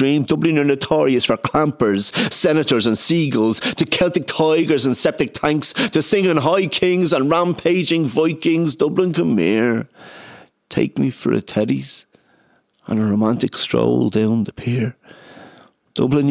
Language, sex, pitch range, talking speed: English, male, 100-135 Hz, 135 wpm